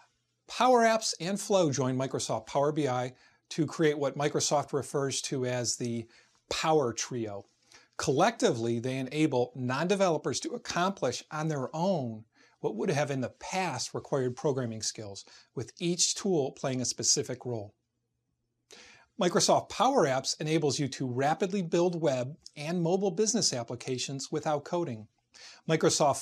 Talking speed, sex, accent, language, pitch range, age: 135 wpm, male, American, English, 125-170 Hz, 40-59